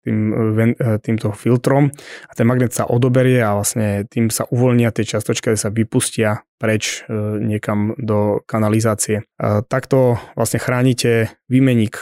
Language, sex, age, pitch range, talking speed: Slovak, male, 20-39, 110-125 Hz, 130 wpm